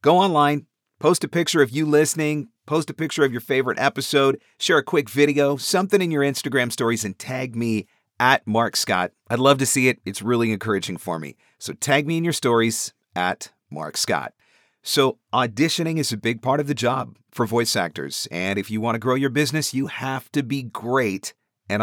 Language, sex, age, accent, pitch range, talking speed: English, male, 40-59, American, 105-140 Hz, 205 wpm